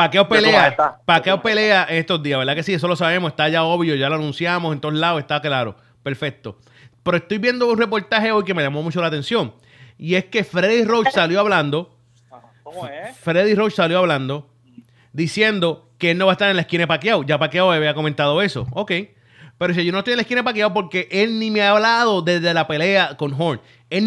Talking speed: 220 wpm